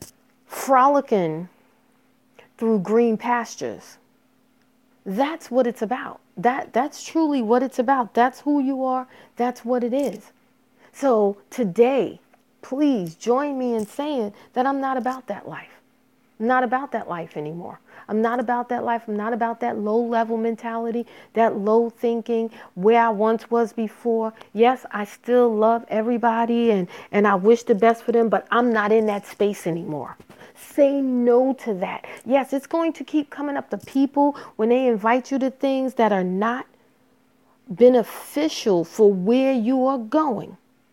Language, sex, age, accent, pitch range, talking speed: English, female, 40-59, American, 225-255 Hz, 160 wpm